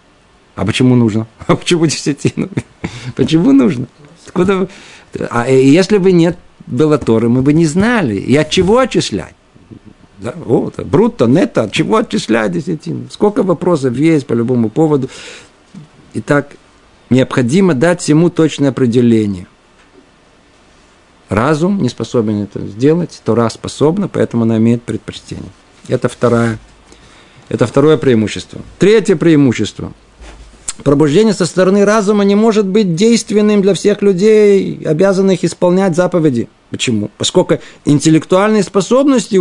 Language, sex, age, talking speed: Russian, male, 50-69, 115 wpm